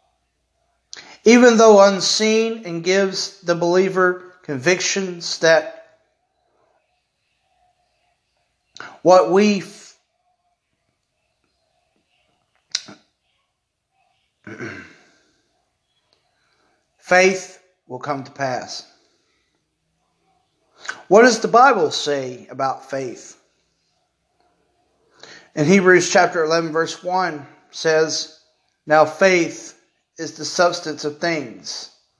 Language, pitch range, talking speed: English, 155-195 Hz, 70 wpm